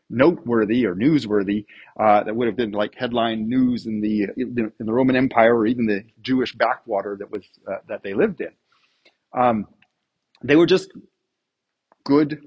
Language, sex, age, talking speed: English, male, 40-59, 165 wpm